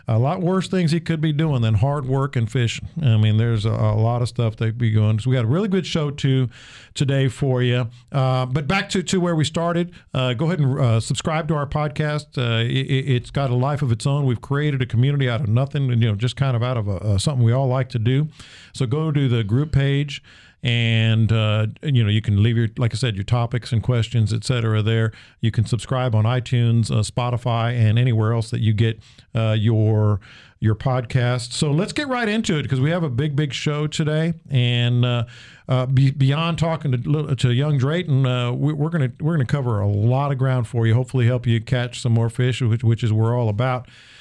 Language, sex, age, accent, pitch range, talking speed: English, male, 50-69, American, 115-145 Hz, 240 wpm